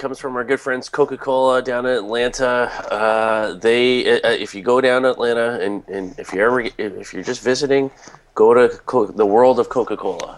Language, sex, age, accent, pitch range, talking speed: English, male, 30-49, American, 95-125 Hz, 195 wpm